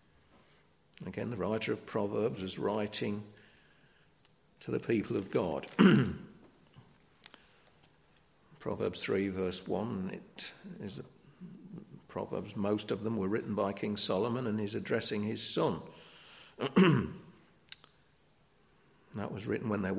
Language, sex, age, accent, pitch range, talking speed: English, male, 50-69, British, 105-115 Hz, 110 wpm